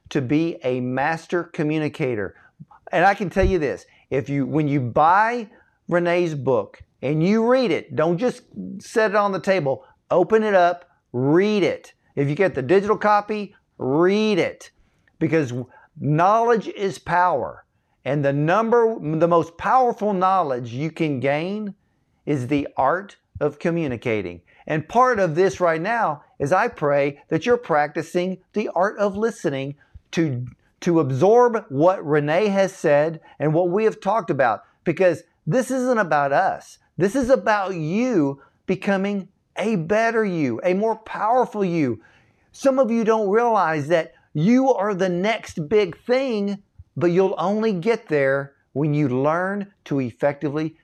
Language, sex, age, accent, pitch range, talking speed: English, male, 50-69, American, 150-210 Hz, 150 wpm